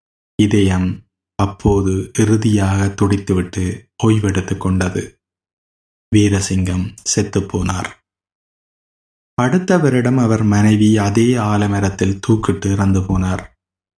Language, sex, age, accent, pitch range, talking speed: Tamil, male, 20-39, native, 95-110 Hz, 75 wpm